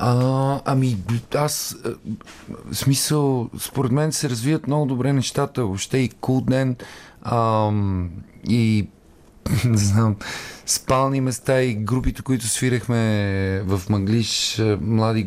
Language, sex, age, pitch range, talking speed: Bulgarian, male, 40-59, 105-125 Hz, 110 wpm